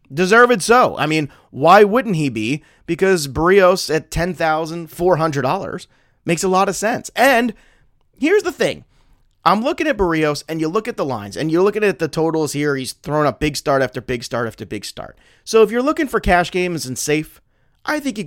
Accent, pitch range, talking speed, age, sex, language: American, 145-190 Hz, 205 wpm, 30-49, male, English